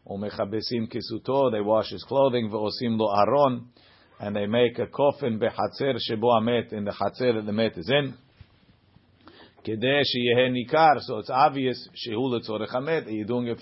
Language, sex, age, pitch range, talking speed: English, male, 50-69, 115-135 Hz, 95 wpm